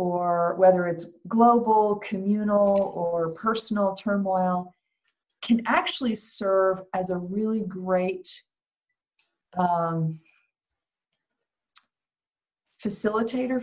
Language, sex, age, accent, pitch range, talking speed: English, female, 50-69, American, 185-245 Hz, 75 wpm